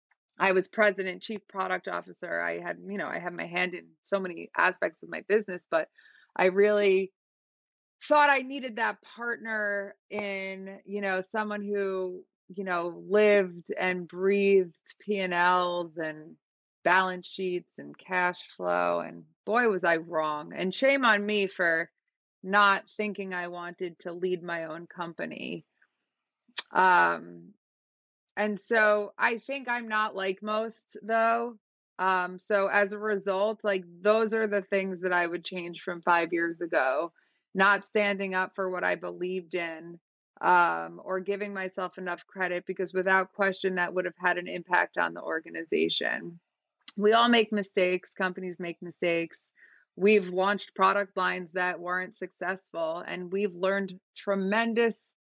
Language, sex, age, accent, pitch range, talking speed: English, female, 30-49, American, 175-205 Hz, 150 wpm